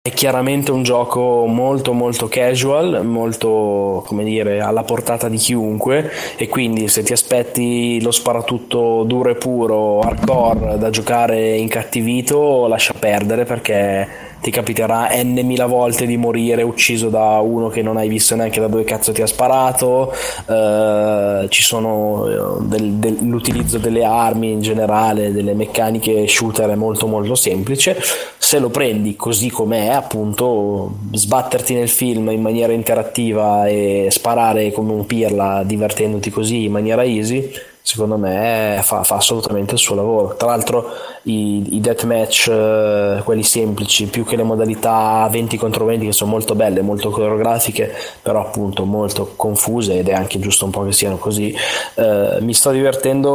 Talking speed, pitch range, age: 155 wpm, 105-120 Hz, 20-39